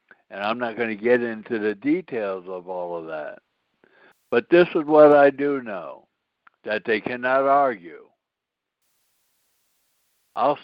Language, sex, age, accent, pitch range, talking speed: English, male, 60-79, American, 140-205 Hz, 135 wpm